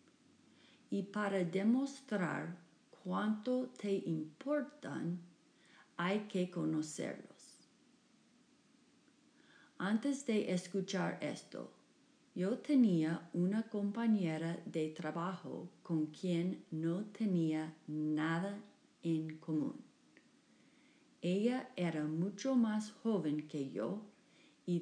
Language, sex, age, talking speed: Spanish, female, 40-59, 80 wpm